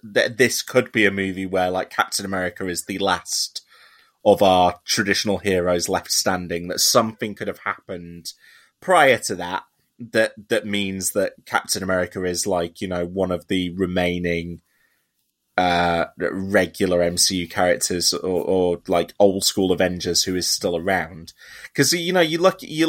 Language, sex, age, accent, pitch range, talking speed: English, male, 20-39, British, 90-125 Hz, 160 wpm